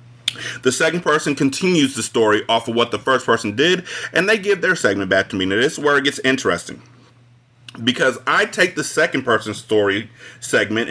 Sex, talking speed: male, 200 wpm